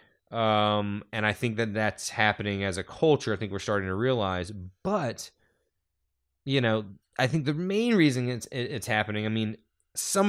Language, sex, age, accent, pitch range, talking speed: English, male, 20-39, American, 100-125 Hz, 175 wpm